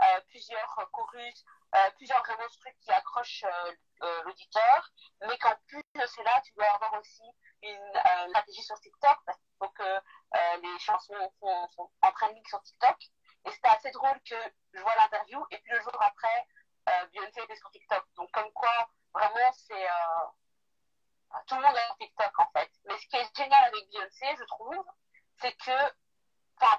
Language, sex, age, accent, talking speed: French, female, 40-59, French, 180 wpm